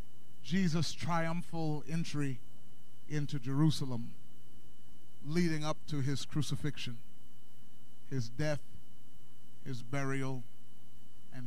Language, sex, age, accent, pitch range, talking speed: English, male, 40-59, American, 125-200 Hz, 80 wpm